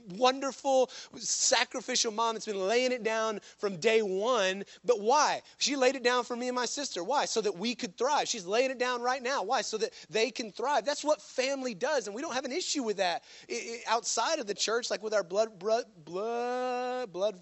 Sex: male